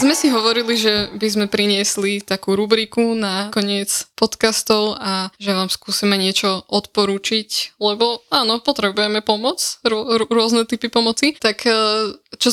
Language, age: Slovak, 10-29